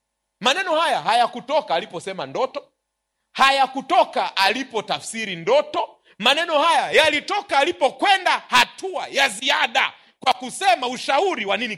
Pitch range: 180-290 Hz